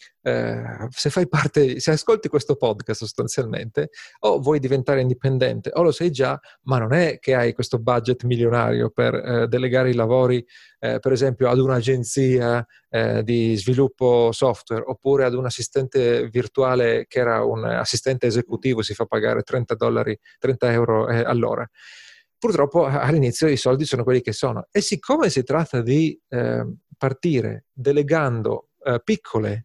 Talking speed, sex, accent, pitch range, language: 150 wpm, male, native, 120-140 Hz, Italian